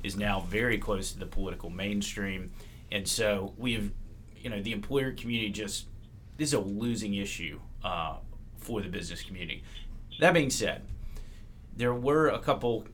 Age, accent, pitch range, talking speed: 30-49, American, 100-110 Hz, 160 wpm